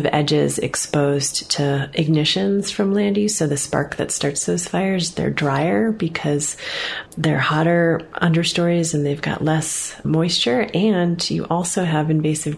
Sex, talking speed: female, 145 wpm